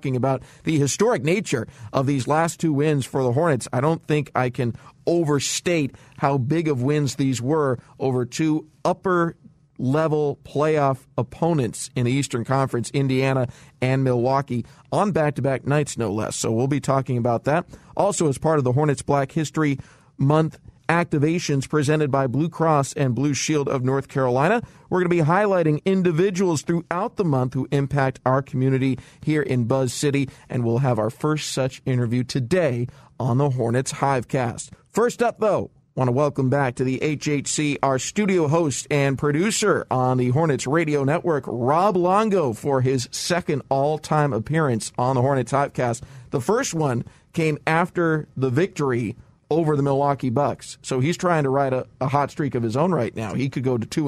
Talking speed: 180 wpm